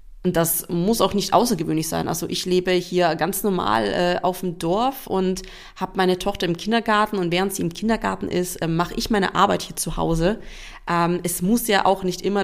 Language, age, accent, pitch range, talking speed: German, 30-49, German, 170-210 Hz, 205 wpm